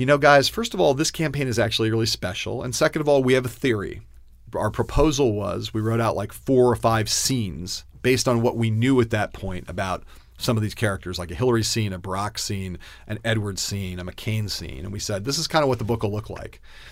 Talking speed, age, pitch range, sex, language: 250 wpm, 40-59, 95-130 Hz, male, English